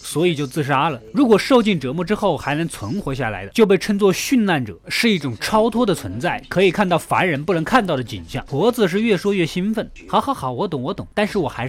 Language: Chinese